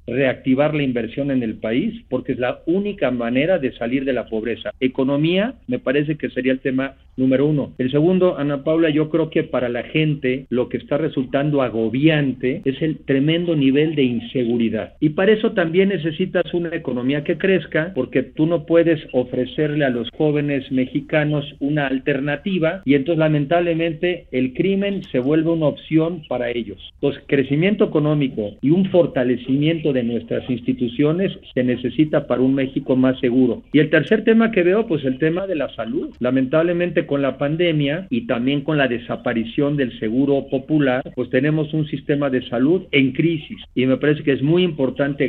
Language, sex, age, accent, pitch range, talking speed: Spanish, male, 50-69, Mexican, 130-160 Hz, 175 wpm